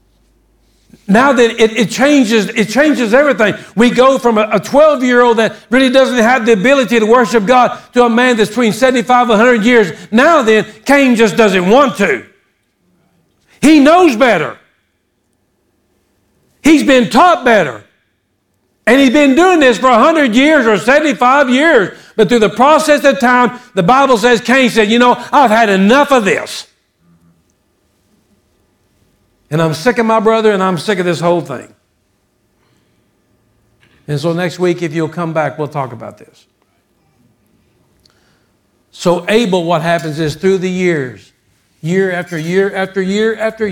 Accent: American